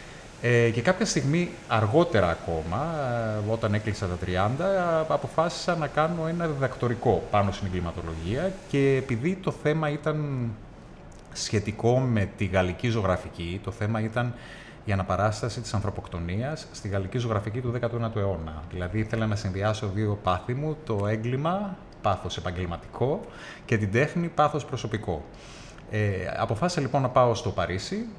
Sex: male